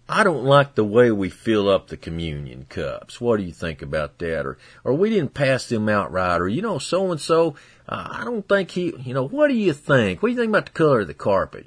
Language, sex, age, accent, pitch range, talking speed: English, male, 40-59, American, 100-130 Hz, 260 wpm